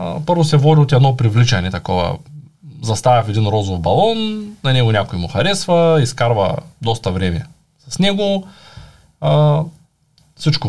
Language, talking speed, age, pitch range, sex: Bulgarian, 135 wpm, 20-39, 120-165 Hz, male